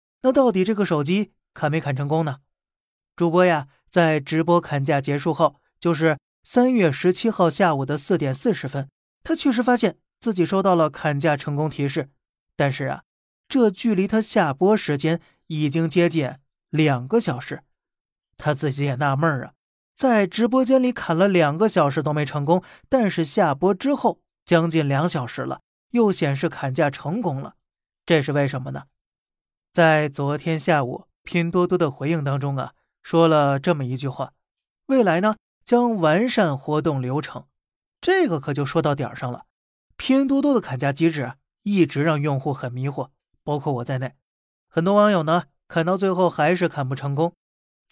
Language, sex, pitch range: Chinese, male, 140-190 Hz